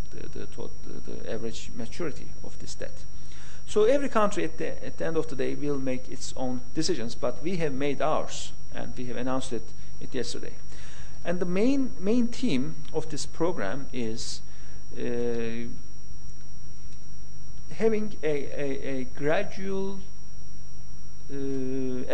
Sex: male